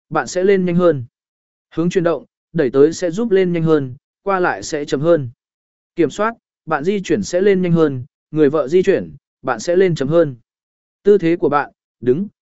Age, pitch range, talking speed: 20-39, 150-195 Hz, 210 wpm